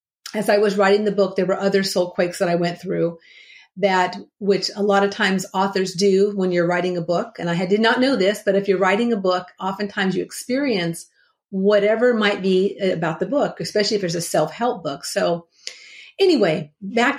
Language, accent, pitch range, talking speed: English, American, 190-240 Hz, 205 wpm